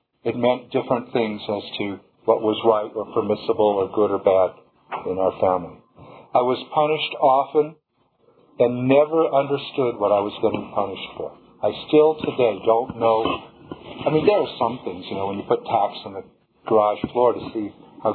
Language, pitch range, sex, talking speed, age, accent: English, 120-145 Hz, male, 180 wpm, 50-69, American